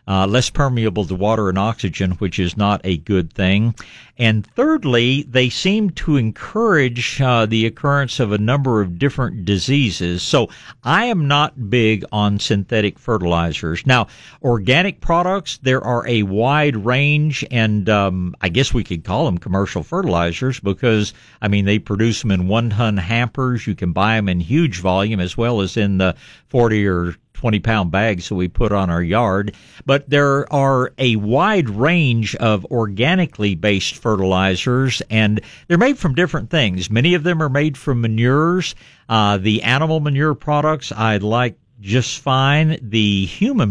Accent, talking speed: American, 160 wpm